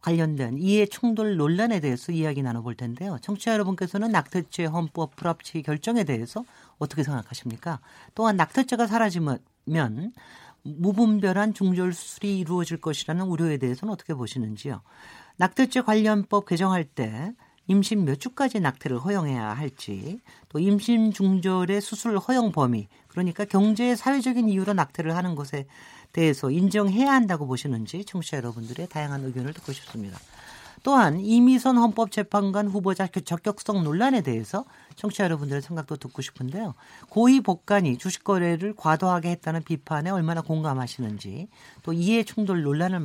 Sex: male